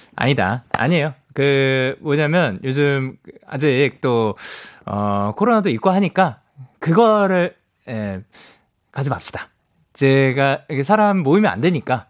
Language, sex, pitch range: Korean, male, 145-230 Hz